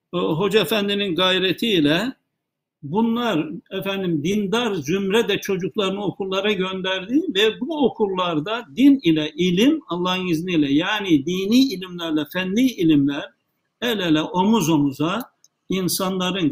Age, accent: 60-79, native